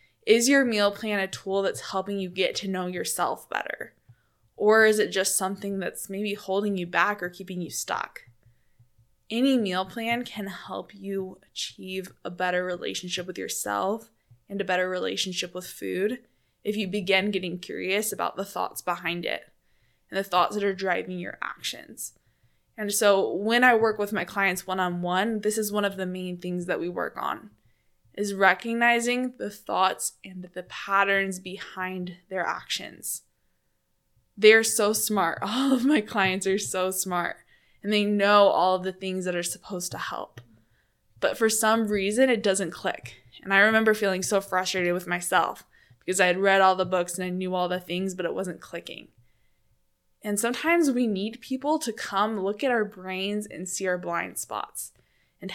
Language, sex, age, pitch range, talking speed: English, female, 20-39, 180-210 Hz, 180 wpm